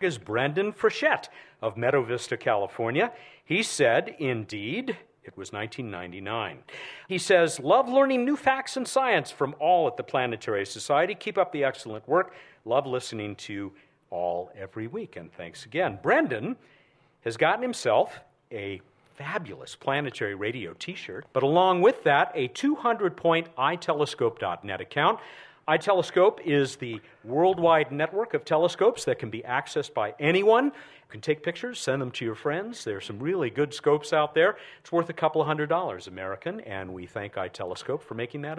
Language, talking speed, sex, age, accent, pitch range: English, 160 wpm, male, 50-69, American, 115-175 Hz